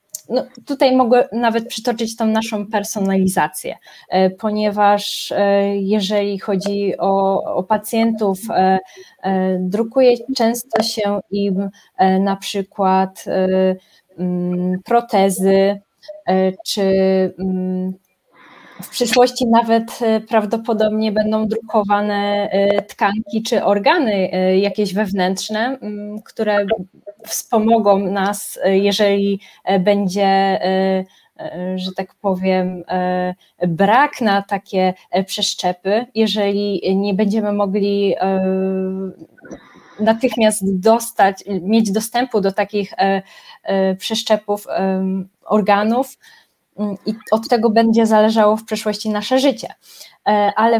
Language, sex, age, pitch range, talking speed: Polish, female, 20-39, 190-220 Hz, 80 wpm